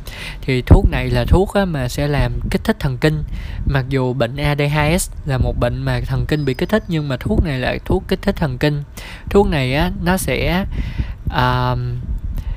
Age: 20-39